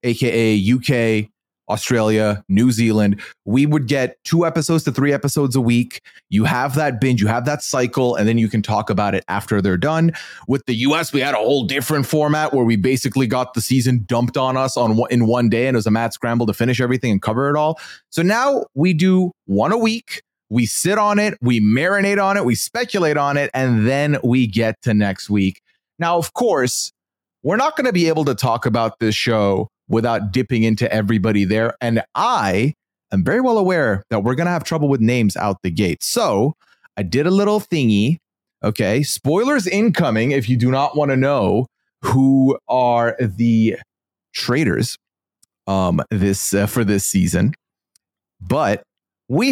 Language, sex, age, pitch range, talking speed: English, male, 30-49, 110-165 Hz, 190 wpm